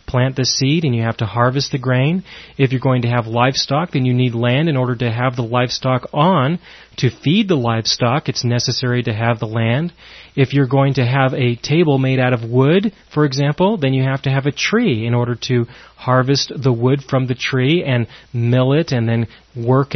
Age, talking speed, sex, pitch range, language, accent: 30-49, 215 wpm, male, 125-150 Hz, English, American